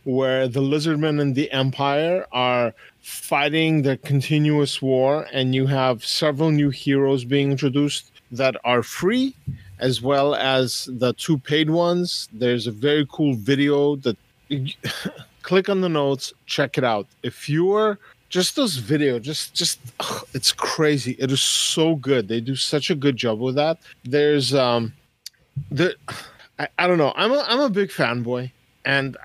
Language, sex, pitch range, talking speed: English, male, 125-155 Hz, 160 wpm